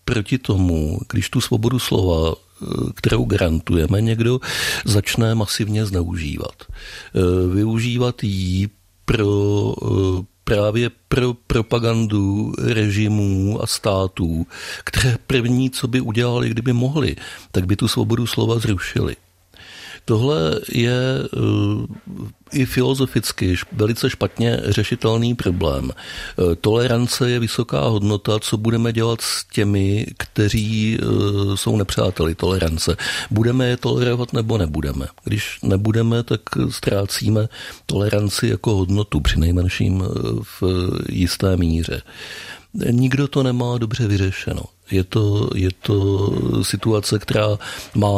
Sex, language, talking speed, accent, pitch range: male, Czech, 100 wpm, native, 95-115 Hz